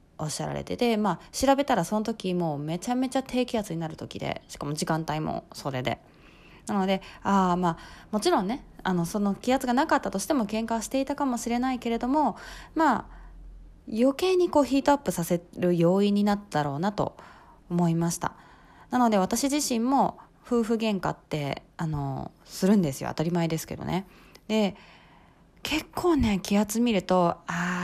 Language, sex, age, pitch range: Japanese, female, 20-39, 170-245 Hz